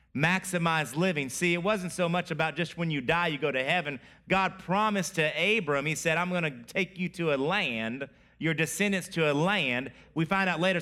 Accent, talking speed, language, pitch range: American, 210 wpm, English, 150-190 Hz